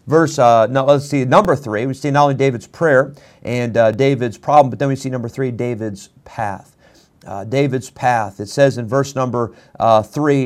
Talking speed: 195 wpm